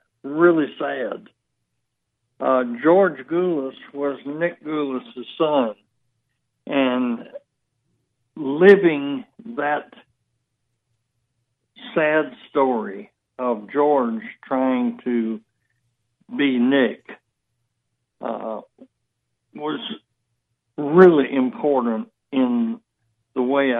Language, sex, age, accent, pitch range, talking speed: English, male, 60-79, American, 120-145 Hz, 70 wpm